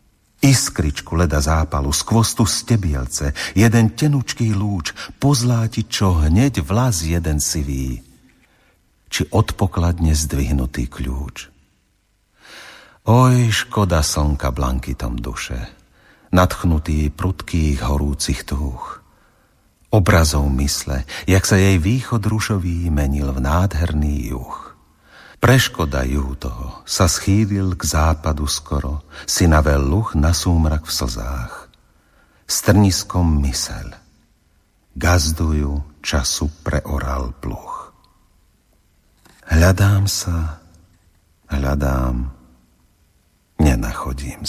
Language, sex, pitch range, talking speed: Slovak, male, 70-100 Hz, 85 wpm